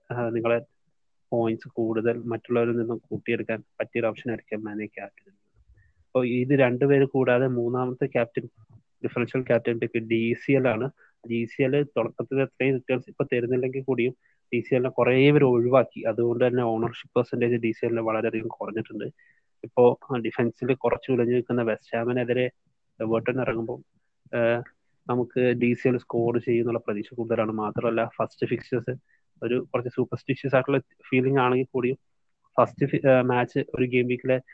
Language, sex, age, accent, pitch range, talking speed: Malayalam, male, 20-39, native, 115-135 Hz, 130 wpm